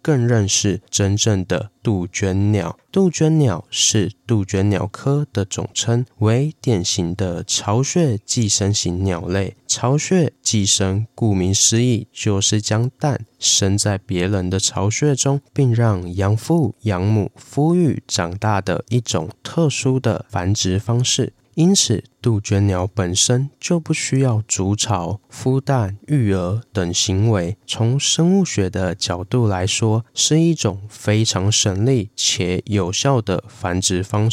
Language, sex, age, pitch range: Chinese, male, 20-39, 100-130 Hz